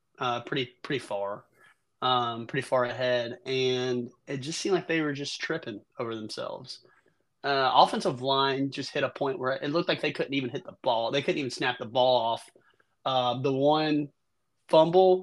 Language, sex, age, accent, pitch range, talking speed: English, male, 20-39, American, 125-145 Hz, 185 wpm